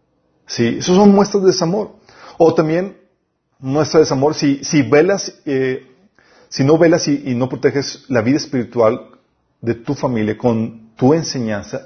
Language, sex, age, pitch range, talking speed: Spanish, male, 40-59, 125-165 Hz, 155 wpm